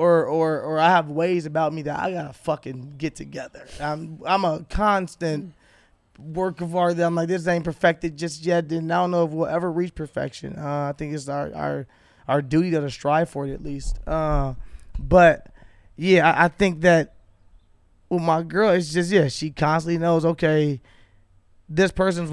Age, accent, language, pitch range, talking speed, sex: 20-39, American, English, 145-180 Hz, 190 wpm, male